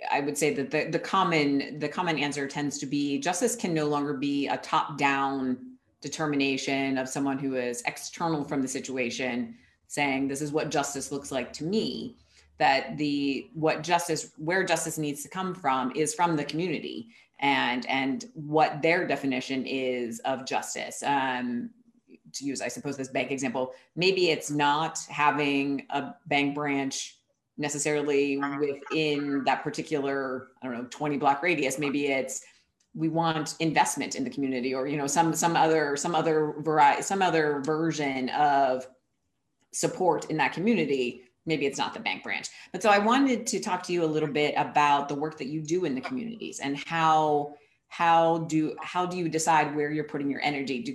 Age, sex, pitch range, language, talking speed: 30-49, female, 140-160 Hz, English, 175 wpm